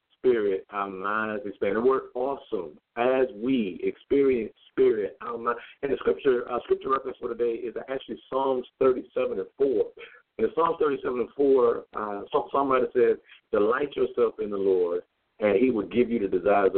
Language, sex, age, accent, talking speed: English, male, 50-69, American, 170 wpm